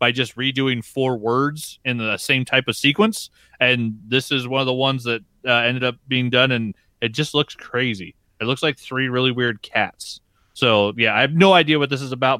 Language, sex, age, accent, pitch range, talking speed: English, male, 30-49, American, 115-130 Hz, 225 wpm